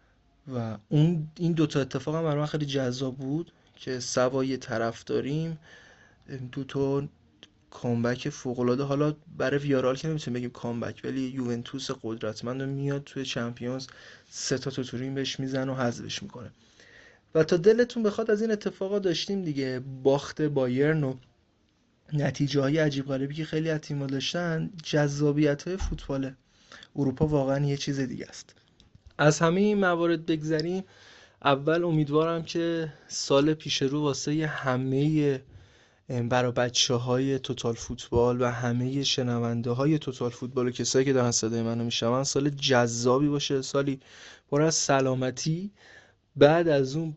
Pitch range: 125-150 Hz